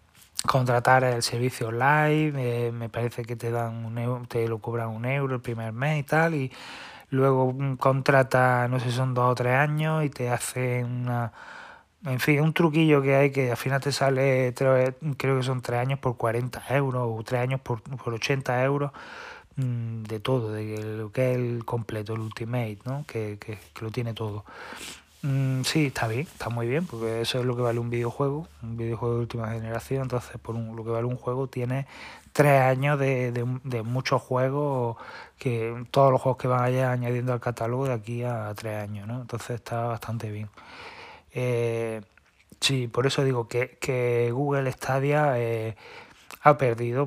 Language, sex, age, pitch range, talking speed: Spanish, male, 20-39, 115-135 Hz, 190 wpm